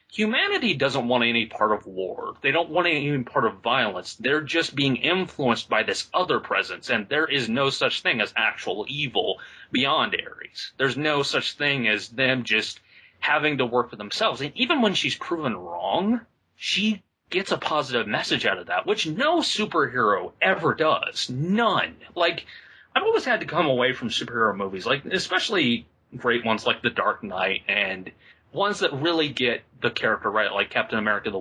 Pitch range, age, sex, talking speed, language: 120-185 Hz, 30-49, male, 180 wpm, English